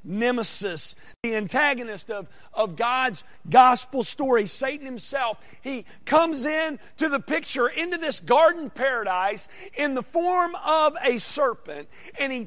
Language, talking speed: English, 135 wpm